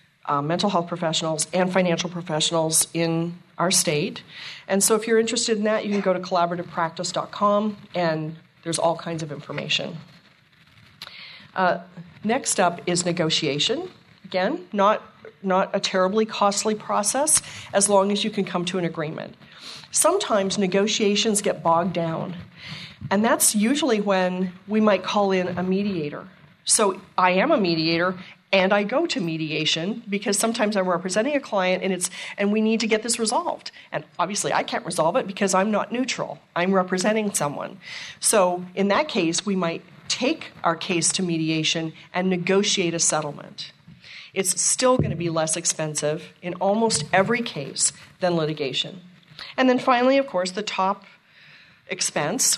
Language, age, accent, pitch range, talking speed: English, 40-59, American, 170-205 Hz, 155 wpm